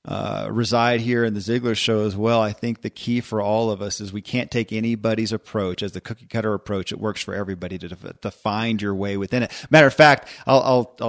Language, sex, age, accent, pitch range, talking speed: English, male, 40-59, American, 105-125 Hz, 245 wpm